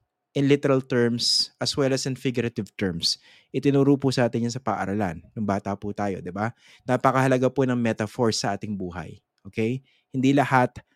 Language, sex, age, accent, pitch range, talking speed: English, male, 20-39, Filipino, 110-140 Hz, 170 wpm